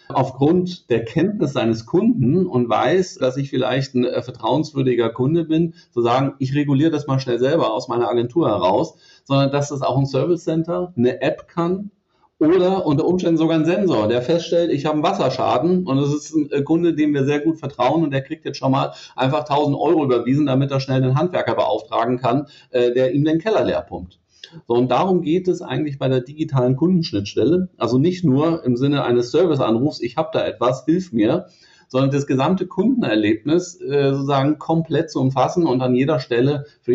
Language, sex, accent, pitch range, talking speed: German, male, German, 125-160 Hz, 195 wpm